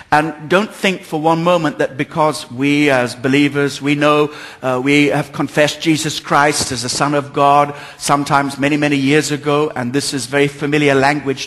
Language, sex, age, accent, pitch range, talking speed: English, male, 60-79, British, 140-170 Hz, 185 wpm